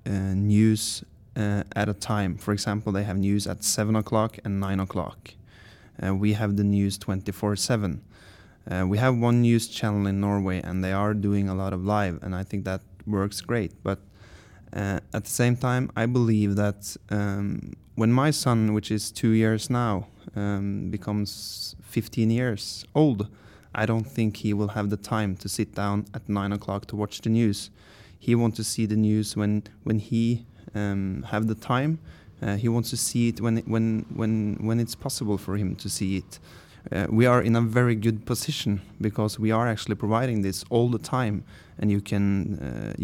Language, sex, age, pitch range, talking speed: Danish, male, 20-39, 100-115 Hz, 190 wpm